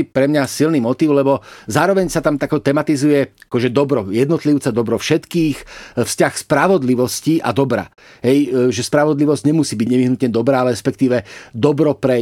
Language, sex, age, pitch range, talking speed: Slovak, male, 40-59, 130-155 Hz, 145 wpm